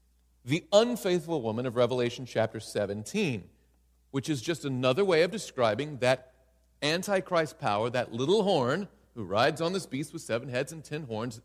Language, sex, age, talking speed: English, male, 40-59, 160 wpm